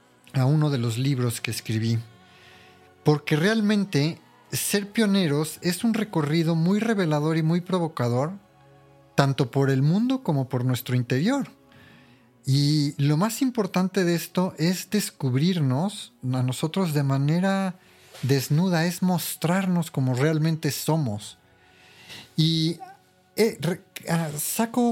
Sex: male